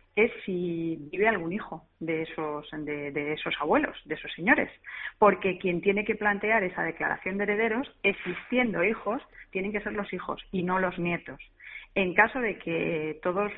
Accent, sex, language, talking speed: Spanish, female, Spanish, 170 wpm